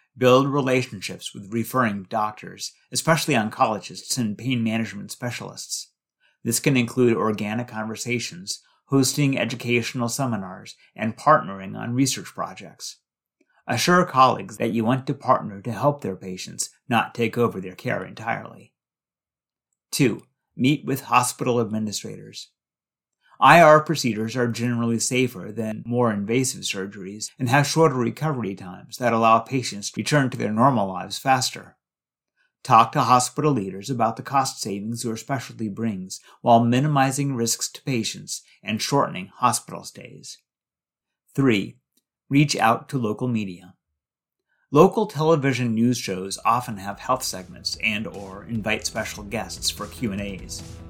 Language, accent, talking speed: English, American, 130 wpm